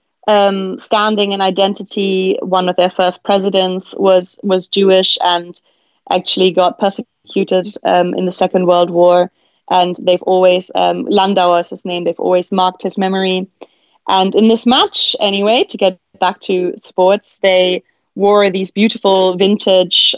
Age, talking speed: 20-39, 145 wpm